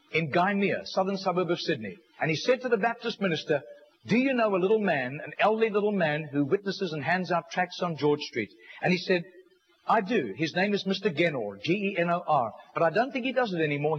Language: English